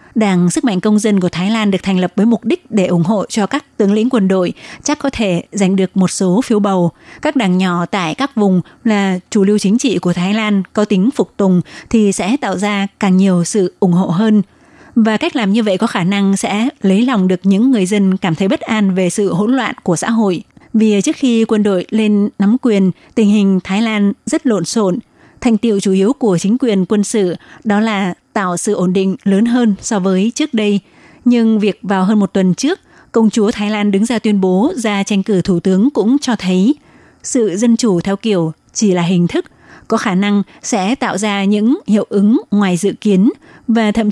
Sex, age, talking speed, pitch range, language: female, 20-39, 230 wpm, 190-225 Hz, Vietnamese